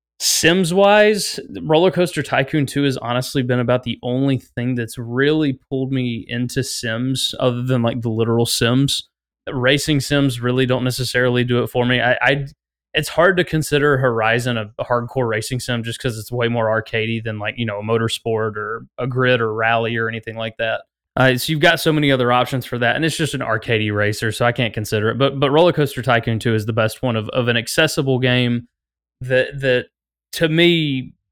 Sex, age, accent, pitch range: male, 20-39, American, 115-145 Hz